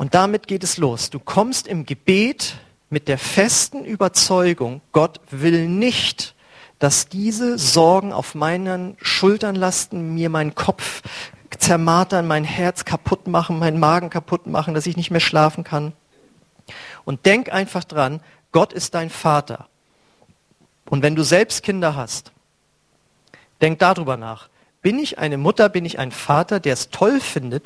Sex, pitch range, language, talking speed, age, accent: male, 150-190 Hz, German, 150 wpm, 40-59, German